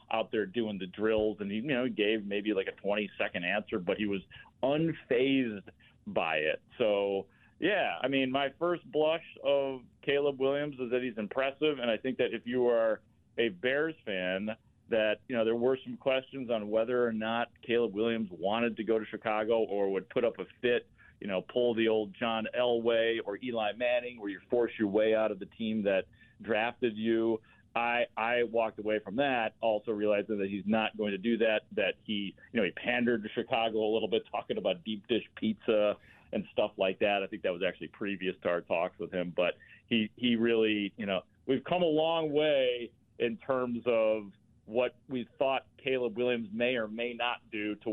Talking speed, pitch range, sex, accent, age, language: 205 wpm, 105-125 Hz, male, American, 40-59, English